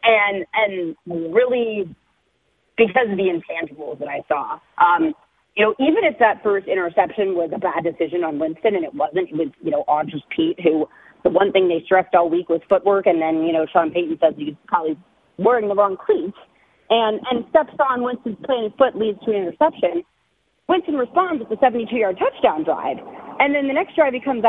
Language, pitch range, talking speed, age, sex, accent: English, 175-240 Hz, 200 wpm, 40-59, female, American